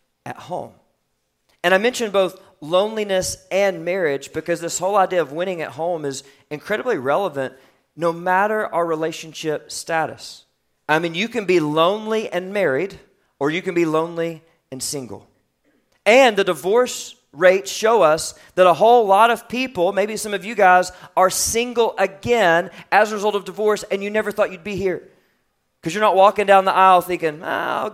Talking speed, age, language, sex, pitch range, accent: 175 wpm, 40-59, English, male, 150-200 Hz, American